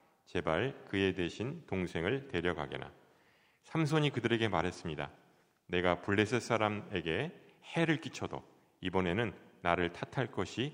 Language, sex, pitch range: Korean, male, 90-120 Hz